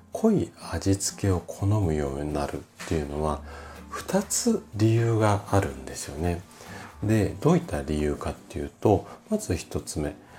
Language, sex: Japanese, male